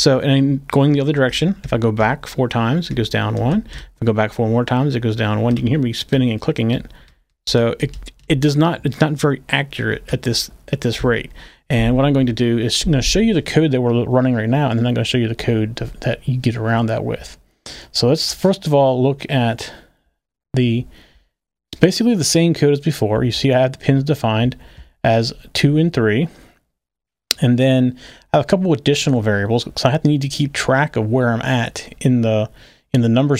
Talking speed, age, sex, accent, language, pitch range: 245 wpm, 30-49, male, American, English, 115-145 Hz